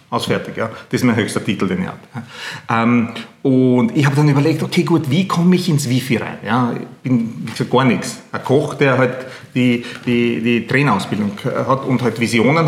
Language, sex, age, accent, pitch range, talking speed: German, male, 40-59, Austrian, 125-160 Hz, 200 wpm